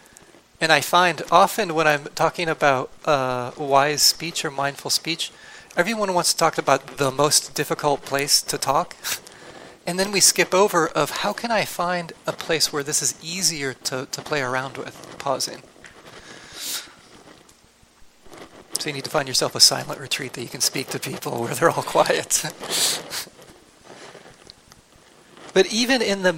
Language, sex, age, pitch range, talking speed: English, male, 30-49, 140-170 Hz, 160 wpm